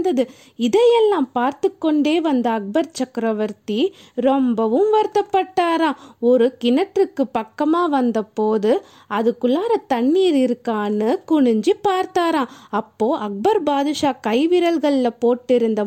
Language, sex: Tamil, female